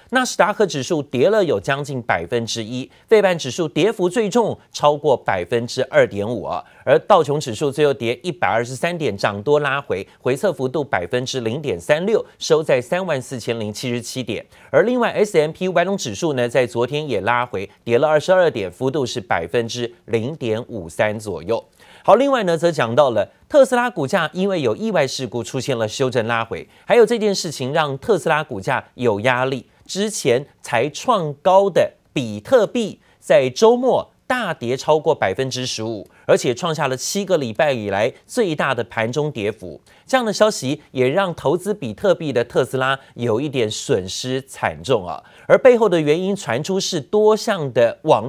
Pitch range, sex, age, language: 125-195 Hz, male, 30-49, Chinese